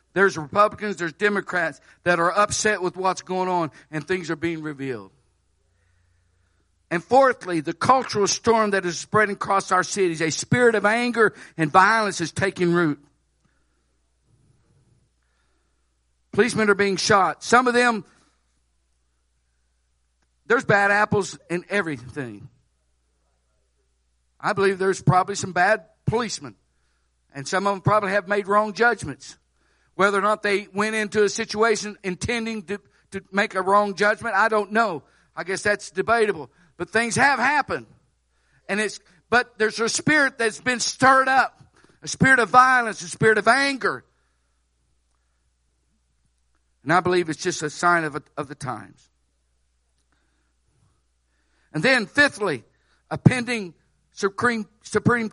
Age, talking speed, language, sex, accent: 60-79, 140 wpm, English, male, American